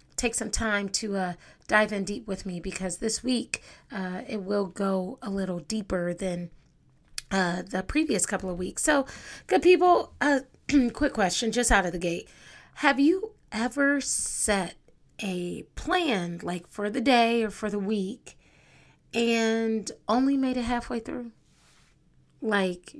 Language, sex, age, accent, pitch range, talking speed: English, female, 30-49, American, 190-250 Hz, 155 wpm